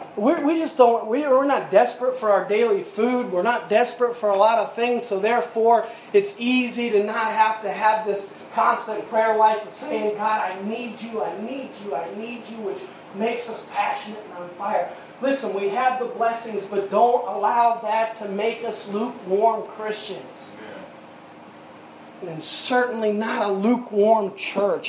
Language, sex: English, male